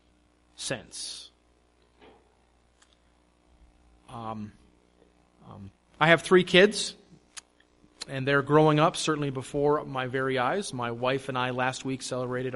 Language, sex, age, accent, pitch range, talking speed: English, male, 30-49, American, 105-165 Hz, 110 wpm